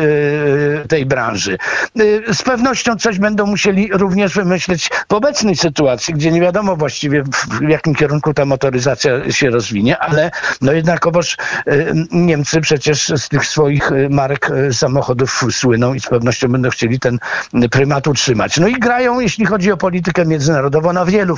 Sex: male